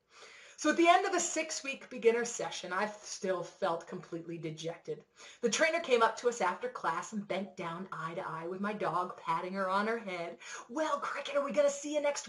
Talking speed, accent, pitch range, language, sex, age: 220 wpm, American, 185-290 Hz, English, female, 30-49